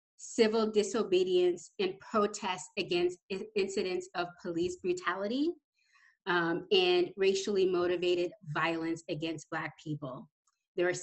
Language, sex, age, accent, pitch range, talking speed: English, female, 30-49, American, 175-215 Hz, 105 wpm